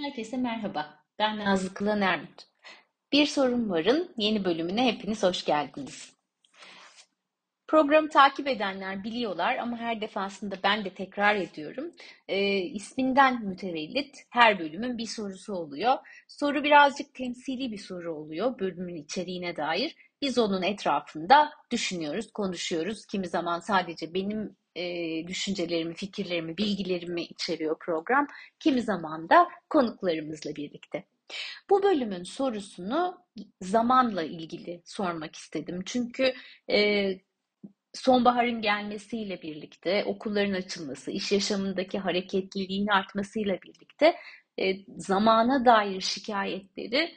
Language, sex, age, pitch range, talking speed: Turkish, female, 30-49, 180-250 Hz, 105 wpm